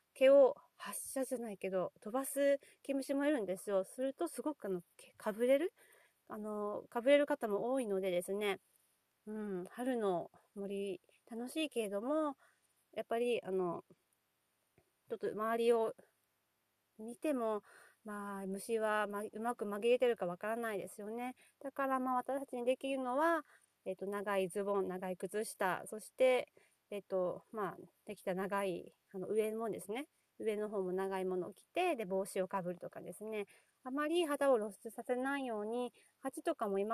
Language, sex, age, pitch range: Japanese, female, 40-59, 195-265 Hz